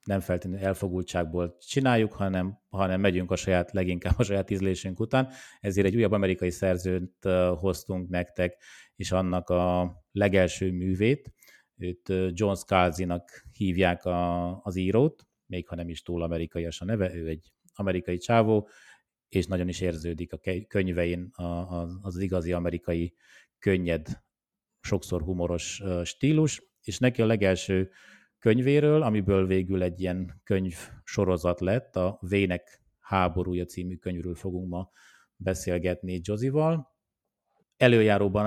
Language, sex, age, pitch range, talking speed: Hungarian, male, 30-49, 90-105 Hz, 125 wpm